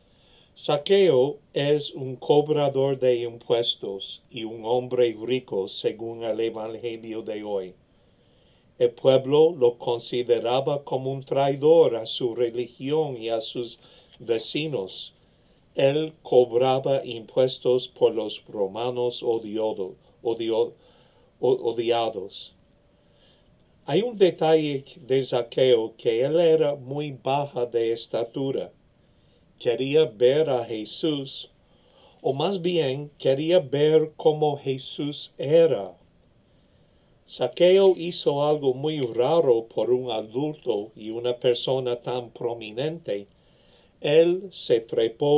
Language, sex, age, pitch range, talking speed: English, male, 50-69, 120-155 Hz, 105 wpm